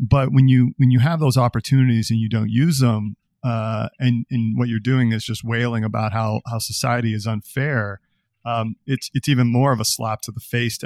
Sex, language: male, English